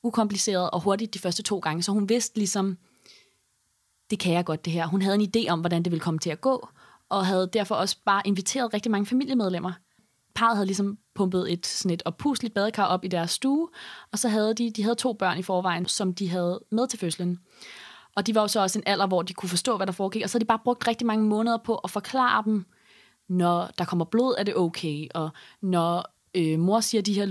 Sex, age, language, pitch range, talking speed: female, 20-39, Danish, 180-230 Hz, 235 wpm